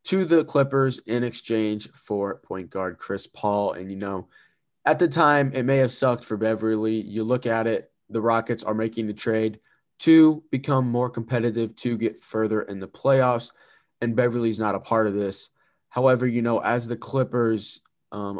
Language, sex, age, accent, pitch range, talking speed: English, male, 20-39, American, 105-125 Hz, 185 wpm